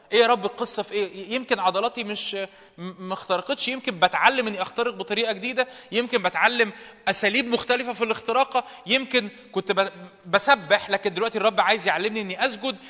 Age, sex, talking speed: 20-39, male, 150 wpm